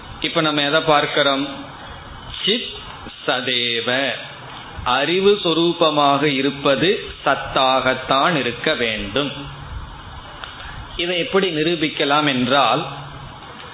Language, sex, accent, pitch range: Tamil, male, native, 135-175 Hz